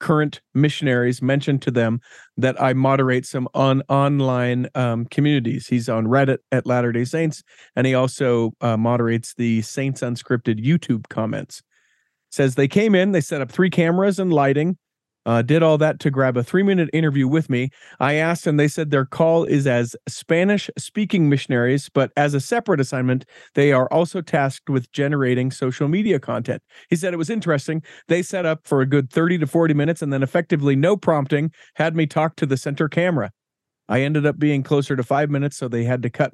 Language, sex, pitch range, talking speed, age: English, male, 125-155 Hz, 190 wpm, 40-59